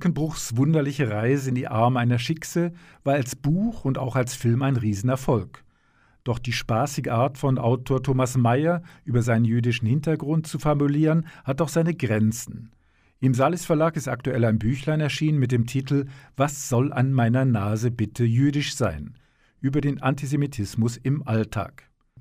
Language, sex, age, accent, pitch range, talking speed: German, male, 50-69, German, 115-150 Hz, 160 wpm